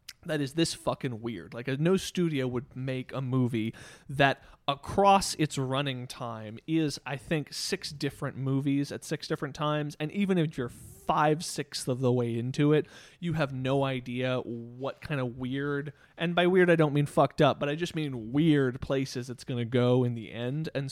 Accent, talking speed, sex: American, 200 wpm, male